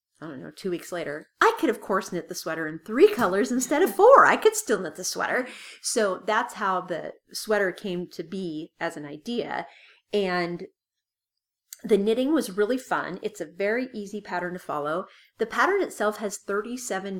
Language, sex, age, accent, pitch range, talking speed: English, female, 30-49, American, 175-225 Hz, 190 wpm